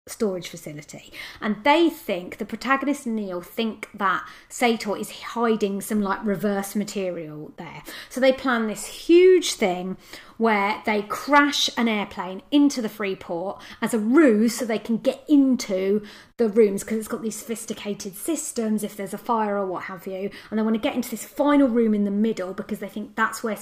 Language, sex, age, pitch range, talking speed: English, female, 30-49, 200-250 Hz, 190 wpm